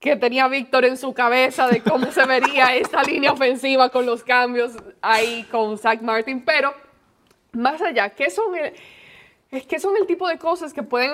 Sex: female